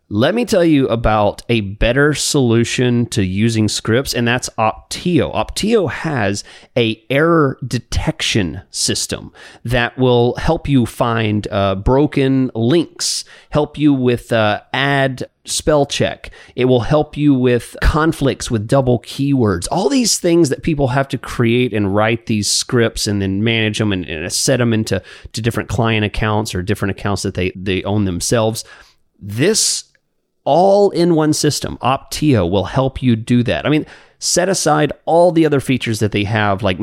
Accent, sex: American, male